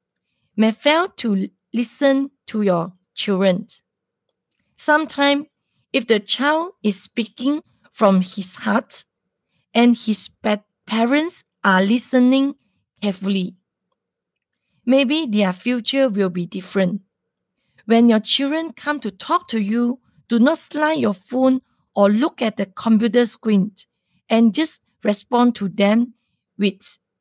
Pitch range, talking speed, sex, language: 200-260 Hz, 115 wpm, female, English